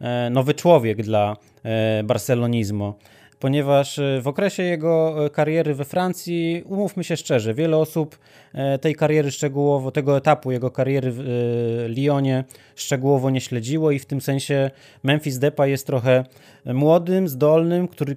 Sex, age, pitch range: male, 20-39, 125-160 Hz